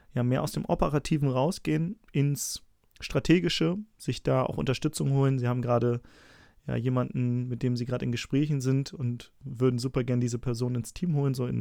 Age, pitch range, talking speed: 30-49, 120-140 Hz, 185 wpm